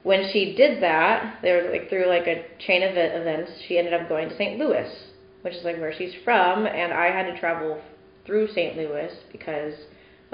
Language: English